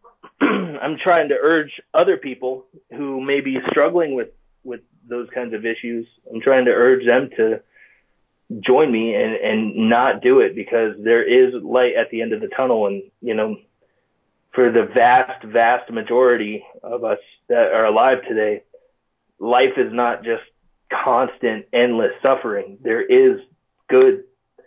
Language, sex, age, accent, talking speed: English, male, 30-49, American, 155 wpm